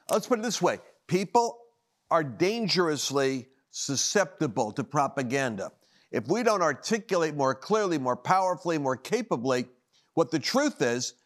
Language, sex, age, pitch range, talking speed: English, male, 50-69, 140-180 Hz, 135 wpm